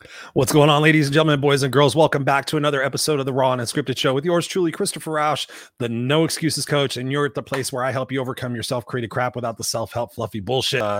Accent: American